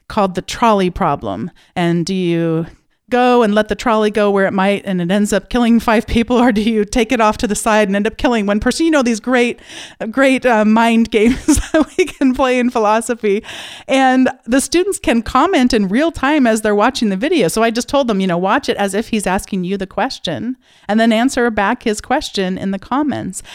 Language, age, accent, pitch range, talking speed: English, 40-59, American, 190-240 Hz, 230 wpm